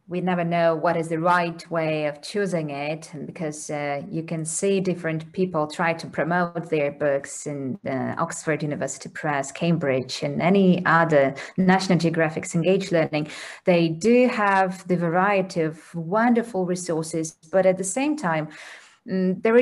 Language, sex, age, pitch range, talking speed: English, female, 30-49, 165-205 Hz, 155 wpm